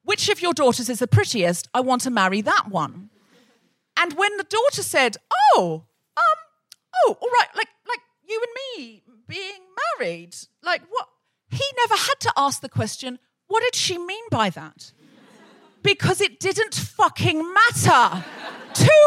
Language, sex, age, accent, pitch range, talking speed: English, female, 40-59, British, 250-390 Hz, 160 wpm